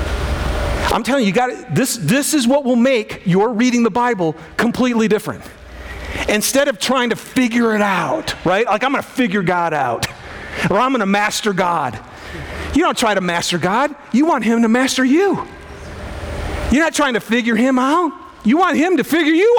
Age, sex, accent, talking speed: 40-59, male, American, 195 wpm